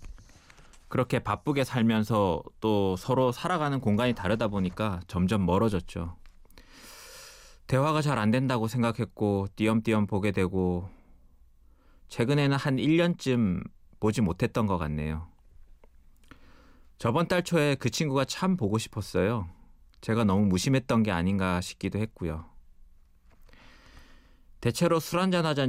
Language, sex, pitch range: Korean, male, 85-115 Hz